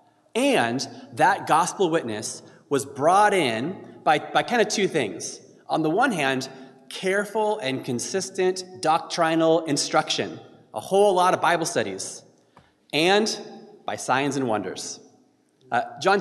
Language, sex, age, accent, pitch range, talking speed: English, male, 30-49, American, 130-195 Hz, 130 wpm